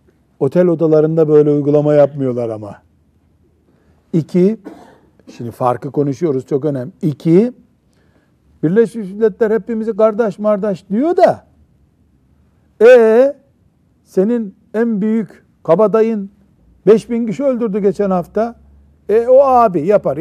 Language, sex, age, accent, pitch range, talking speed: Turkish, male, 60-79, native, 130-195 Hz, 100 wpm